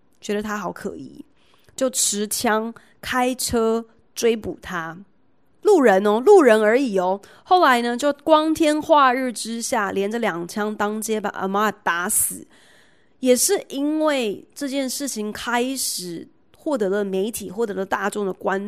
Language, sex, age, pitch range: Chinese, female, 20-39, 200-255 Hz